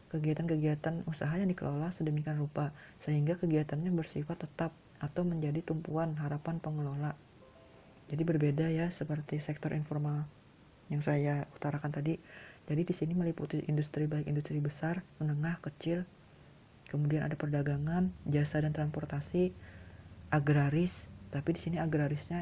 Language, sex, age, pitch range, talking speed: Malay, female, 40-59, 145-160 Hz, 125 wpm